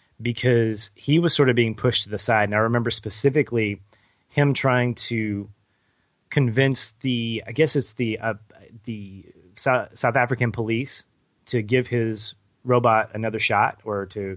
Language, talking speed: English, 150 wpm